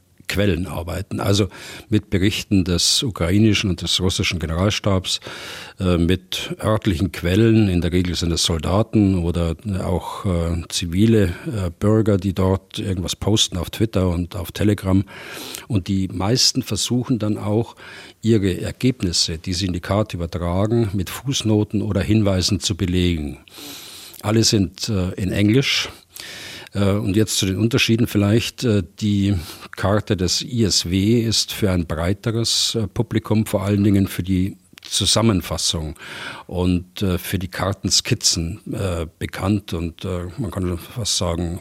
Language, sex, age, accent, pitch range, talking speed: German, male, 50-69, German, 90-110 Hz, 135 wpm